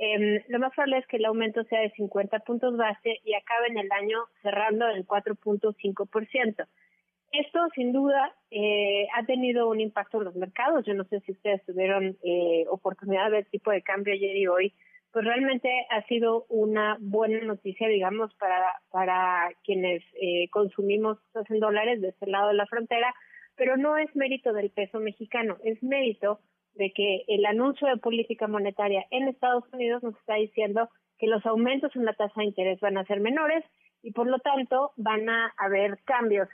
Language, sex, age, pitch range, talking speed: Spanish, female, 30-49, 205-245 Hz, 180 wpm